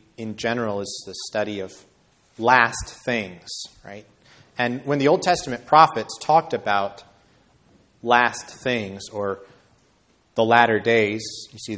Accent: American